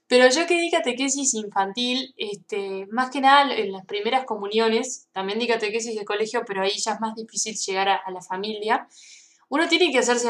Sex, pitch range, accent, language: female, 195-255 Hz, Argentinian, Spanish